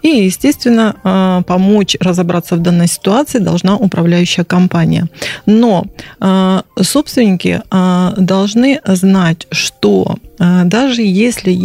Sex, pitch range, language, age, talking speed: female, 180-210 Hz, Russian, 30-49, 90 wpm